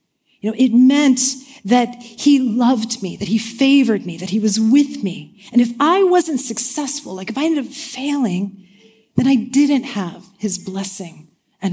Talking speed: 180 wpm